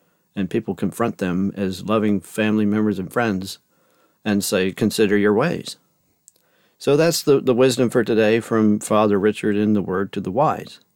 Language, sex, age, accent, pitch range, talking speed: English, male, 50-69, American, 105-130 Hz, 170 wpm